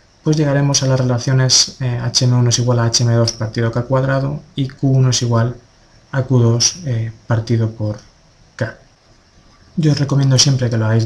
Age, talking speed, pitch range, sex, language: 20-39, 170 wpm, 110-130 Hz, male, Spanish